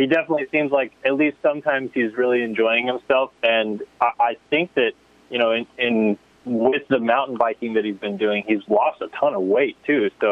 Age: 20-39